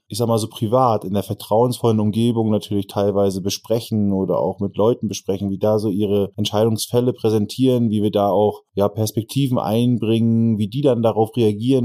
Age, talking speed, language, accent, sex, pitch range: 20-39, 175 wpm, German, German, male, 100-115 Hz